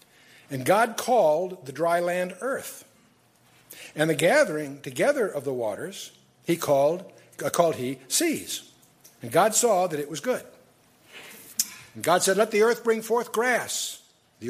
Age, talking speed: 60-79, 150 wpm